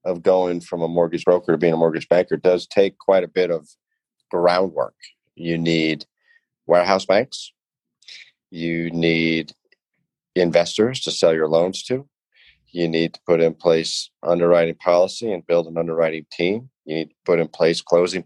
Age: 40-59